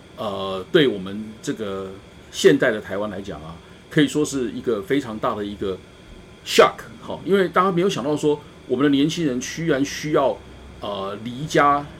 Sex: male